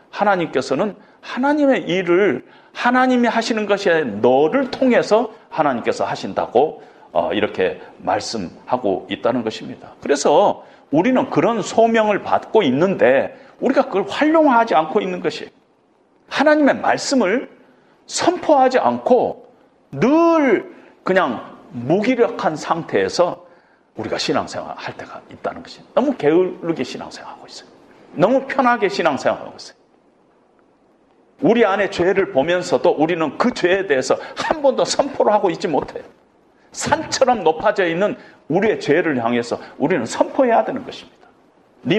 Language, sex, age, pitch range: Korean, male, 40-59, 195-285 Hz